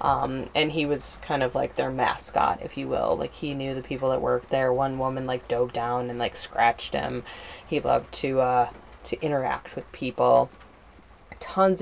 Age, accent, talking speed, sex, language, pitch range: 20-39, American, 195 wpm, female, English, 130-165 Hz